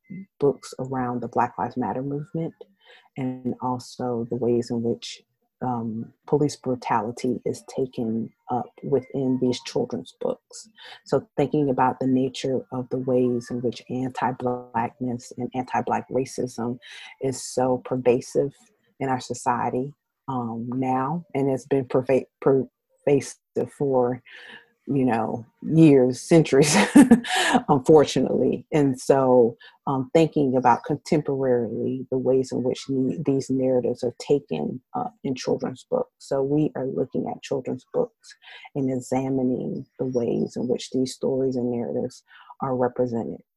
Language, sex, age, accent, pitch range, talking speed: English, female, 40-59, American, 125-140 Hz, 125 wpm